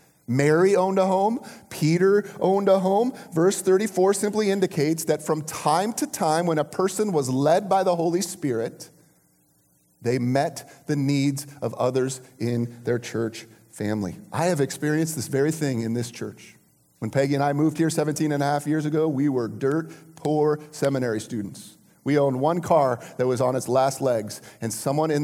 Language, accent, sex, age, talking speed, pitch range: English, American, male, 30-49, 180 wpm, 135-185 Hz